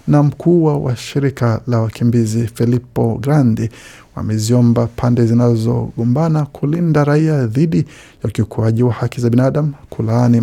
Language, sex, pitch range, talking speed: Swahili, male, 115-145 Hz, 115 wpm